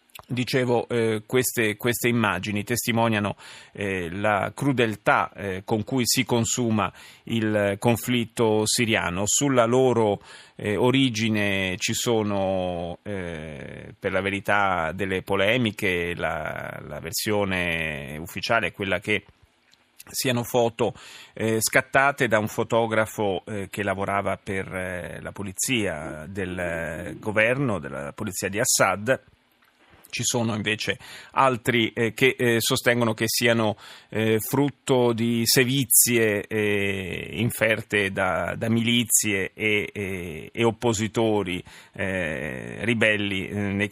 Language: Italian